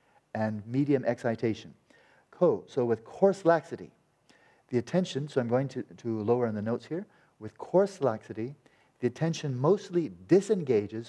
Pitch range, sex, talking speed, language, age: 115-155 Hz, male, 140 wpm, English, 40-59